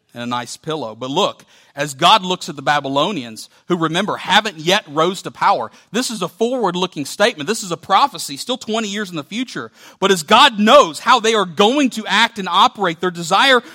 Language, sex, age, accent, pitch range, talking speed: English, male, 40-59, American, 130-195 Hz, 210 wpm